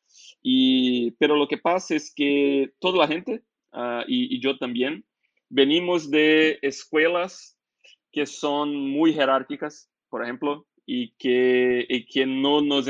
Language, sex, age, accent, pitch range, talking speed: Spanish, male, 20-39, Brazilian, 125-150 Hz, 140 wpm